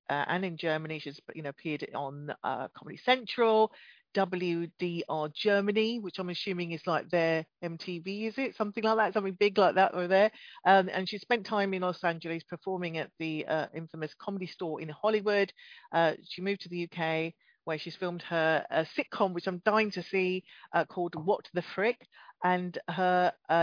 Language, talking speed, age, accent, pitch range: English, 190 wpm, 40-59, British, 160-195 Hz